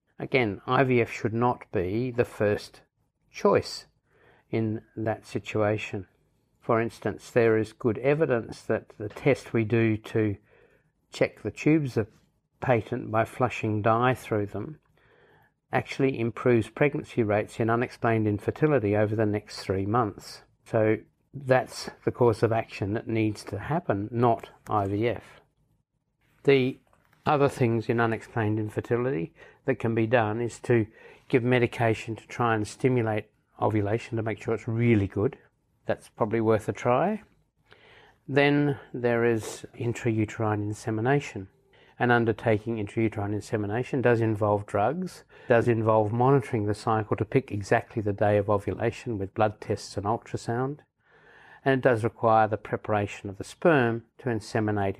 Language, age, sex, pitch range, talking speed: English, 50-69, male, 105-125 Hz, 140 wpm